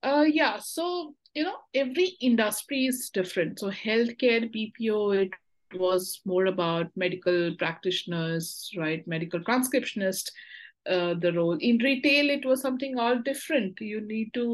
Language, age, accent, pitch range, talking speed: English, 50-69, Indian, 185-245 Hz, 140 wpm